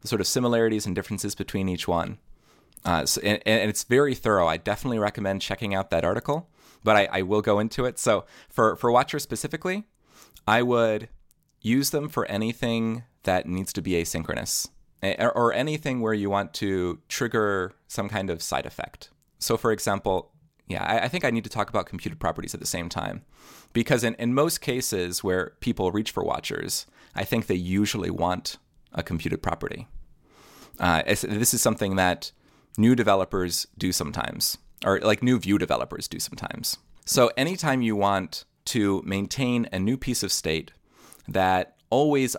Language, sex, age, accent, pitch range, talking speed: English, male, 30-49, American, 95-120 Hz, 175 wpm